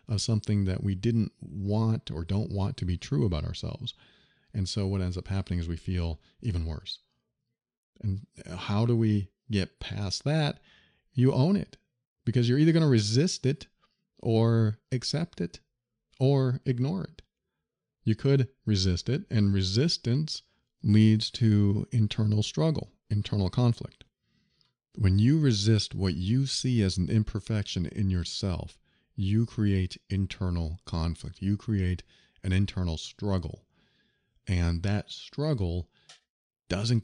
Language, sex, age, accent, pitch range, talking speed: English, male, 40-59, American, 95-125 Hz, 135 wpm